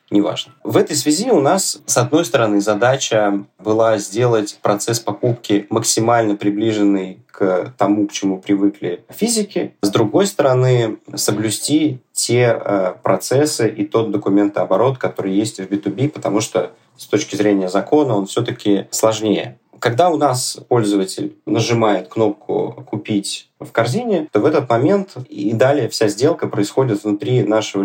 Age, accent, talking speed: 20-39, native, 135 wpm